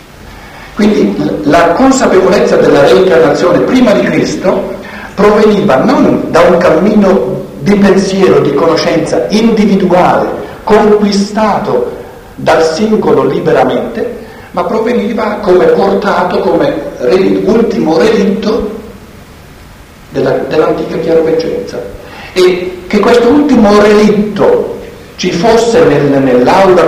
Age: 60-79